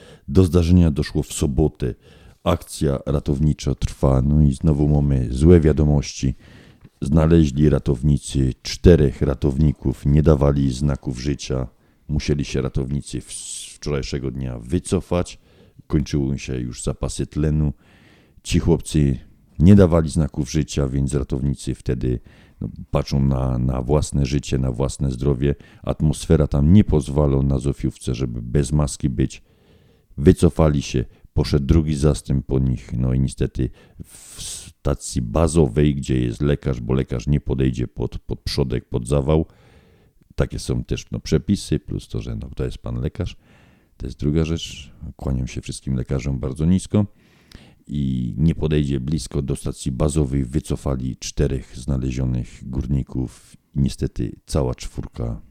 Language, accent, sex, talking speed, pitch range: Polish, native, male, 130 wpm, 65-80 Hz